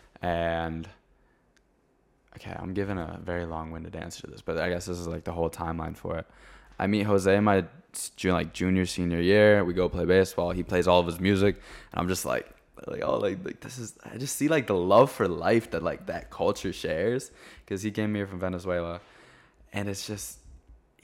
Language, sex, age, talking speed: English, male, 20-39, 210 wpm